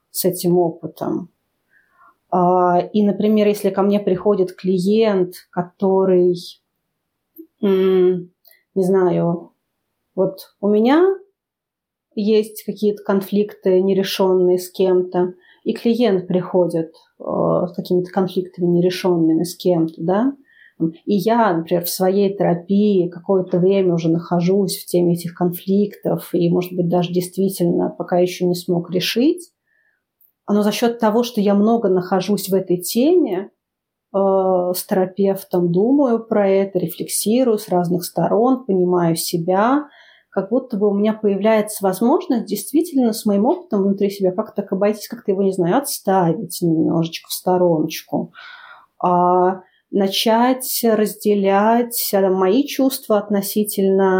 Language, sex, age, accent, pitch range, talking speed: Russian, female, 30-49, native, 180-215 Hz, 120 wpm